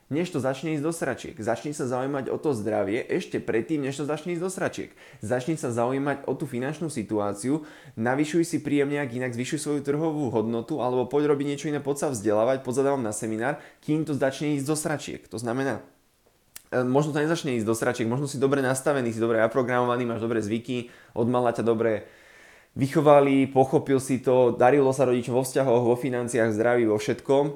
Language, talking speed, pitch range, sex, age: Slovak, 190 wpm, 115-140 Hz, male, 20-39